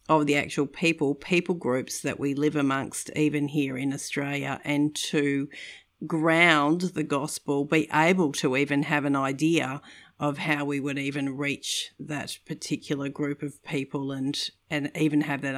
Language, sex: English, female